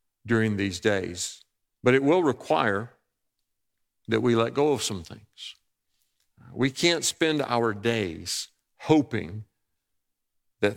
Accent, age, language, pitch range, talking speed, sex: American, 50-69, English, 100-125 Hz, 115 wpm, male